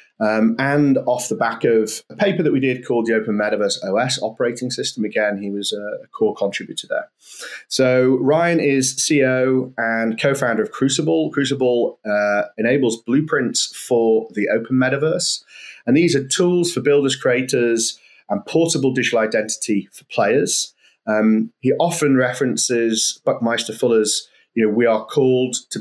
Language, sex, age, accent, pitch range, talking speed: English, male, 30-49, British, 110-140 Hz, 155 wpm